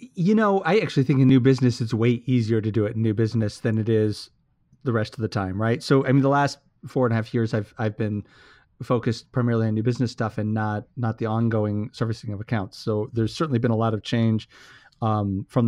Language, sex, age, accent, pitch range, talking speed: English, male, 30-49, American, 110-140 Hz, 240 wpm